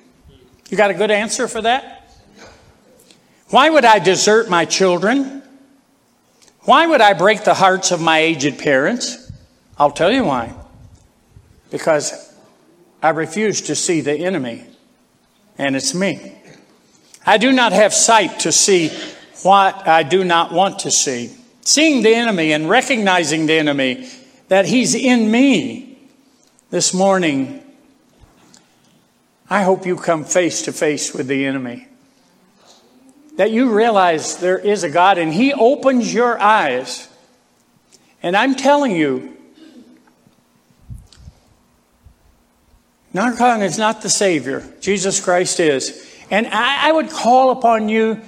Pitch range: 180-260 Hz